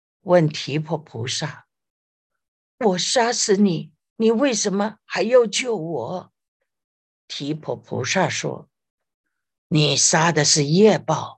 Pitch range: 140-185 Hz